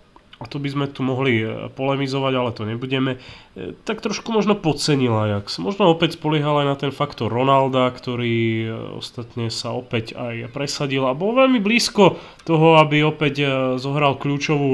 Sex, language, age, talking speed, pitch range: male, Slovak, 30-49, 160 wpm, 130-155 Hz